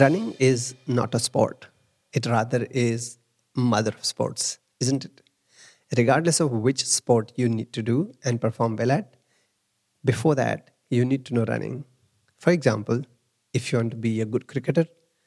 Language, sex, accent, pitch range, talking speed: English, male, Indian, 115-140 Hz, 165 wpm